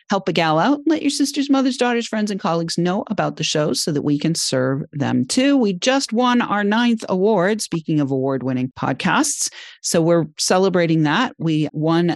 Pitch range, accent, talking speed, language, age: 155-220 Hz, American, 190 wpm, English, 40-59